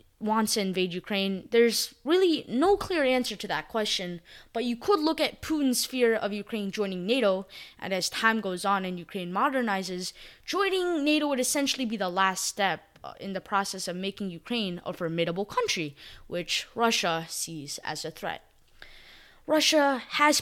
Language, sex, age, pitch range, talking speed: English, female, 20-39, 195-270 Hz, 165 wpm